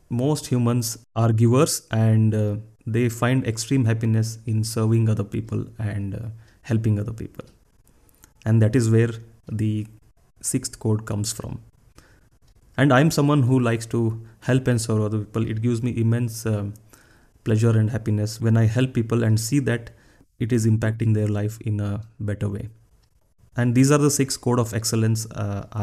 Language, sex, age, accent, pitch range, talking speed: Kannada, male, 30-49, native, 110-120 Hz, 170 wpm